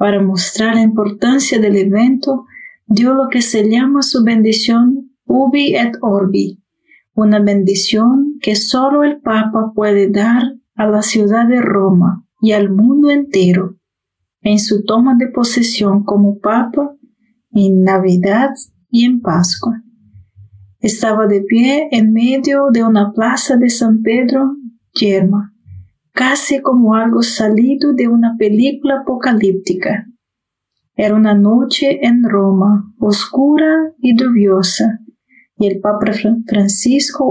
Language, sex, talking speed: Spanish, female, 125 wpm